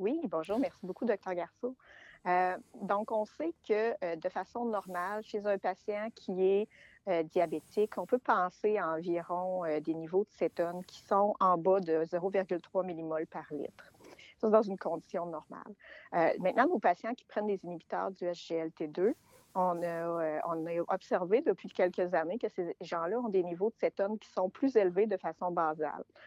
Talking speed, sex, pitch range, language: 185 wpm, female, 170-210 Hz, French